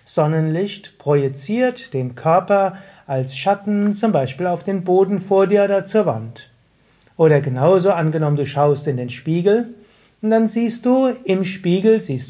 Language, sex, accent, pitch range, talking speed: German, male, German, 140-185 Hz, 150 wpm